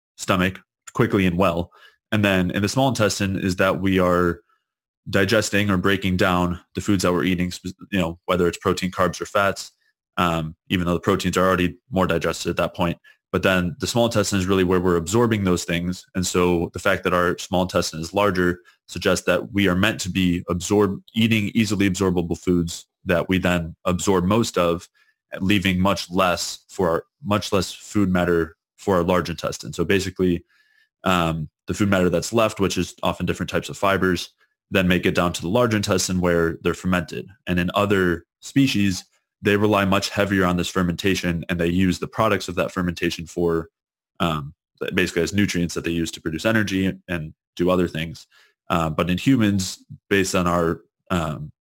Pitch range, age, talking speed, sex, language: 85-100 Hz, 20-39, 190 wpm, male, English